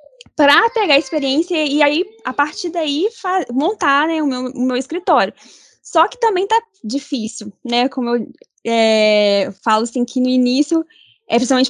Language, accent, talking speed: Portuguese, Brazilian, 170 wpm